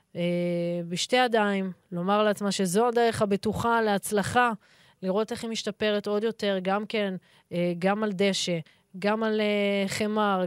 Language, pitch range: Hebrew, 200-230 Hz